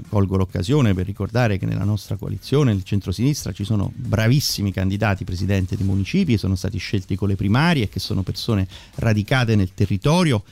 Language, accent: Italian, native